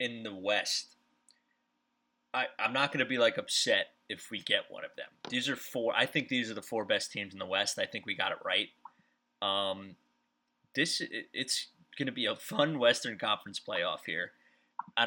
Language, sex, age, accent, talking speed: English, male, 20-39, American, 205 wpm